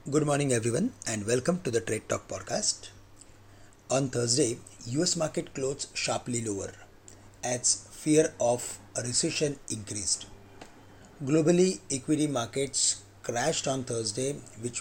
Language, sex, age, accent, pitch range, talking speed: English, male, 30-49, Indian, 105-145 Hz, 120 wpm